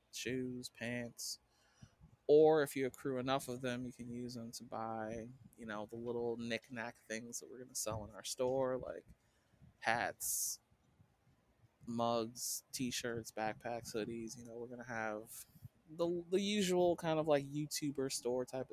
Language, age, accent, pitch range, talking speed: English, 20-39, American, 110-130 Hz, 160 wpm